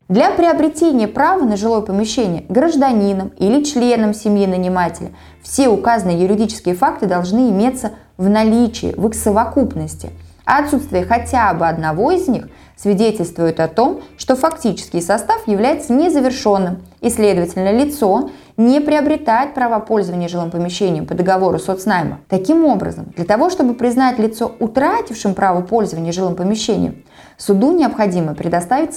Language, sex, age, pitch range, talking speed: Russian, female, 20-39, 185-260 Hz, 130 wpm